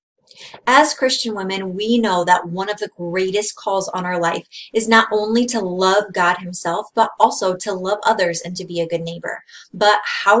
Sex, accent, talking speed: female, American, 195 wpm